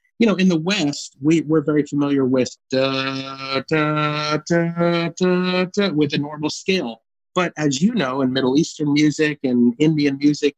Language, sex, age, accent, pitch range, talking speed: English, male, 30-49, American, 135-170 Hz, 175 wpm